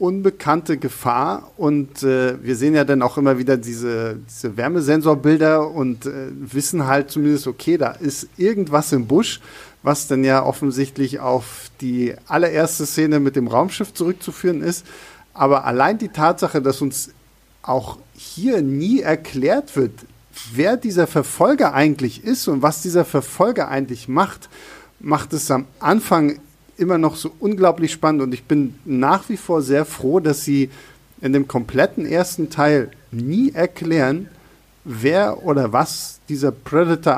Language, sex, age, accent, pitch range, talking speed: German, male, 50-69, German, 135-160 Hz, 145 wpm